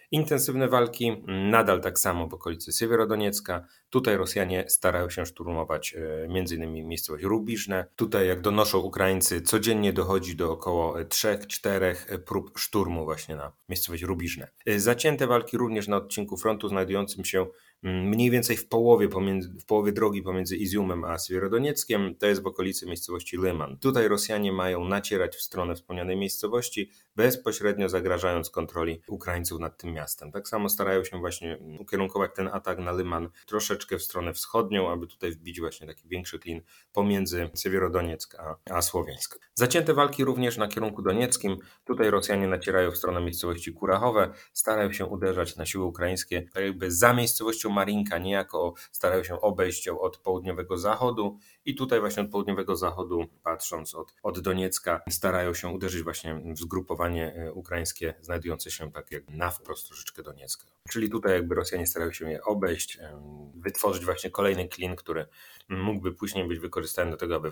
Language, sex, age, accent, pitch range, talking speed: Polish, male, 30-49, native, 85-105 Hz, 155 wpm